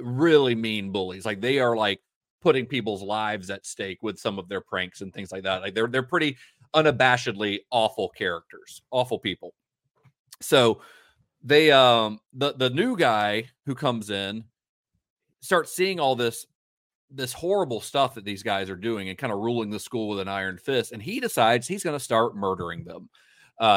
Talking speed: 180 wpm